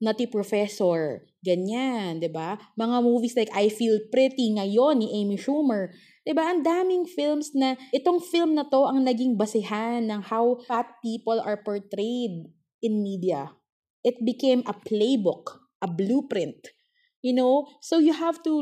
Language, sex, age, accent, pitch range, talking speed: English, female, 20-39, Filipino, 190-245 Hz, 155 wpm